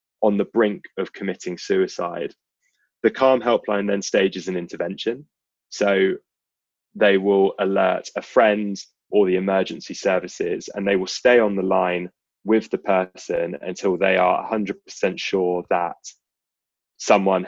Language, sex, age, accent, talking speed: English, male, 20-39, British, 135 wpm